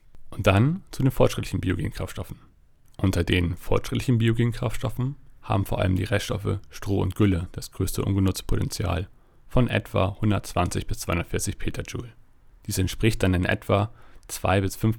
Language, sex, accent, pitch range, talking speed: English, male, German, 95-115 Hz, 145 wpm